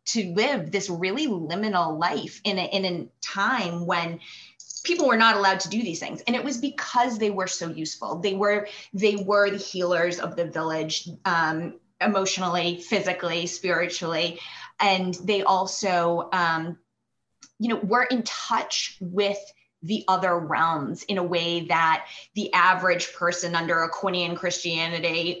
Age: 20-39